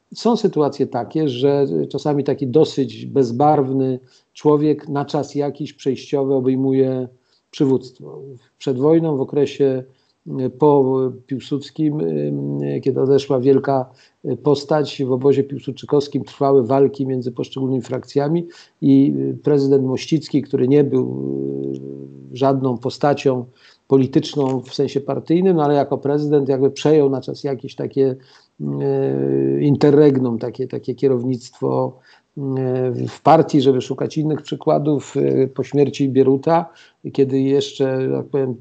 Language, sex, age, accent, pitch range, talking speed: Polish, male, 50-69, native, 130-145 Hz, 110 wpm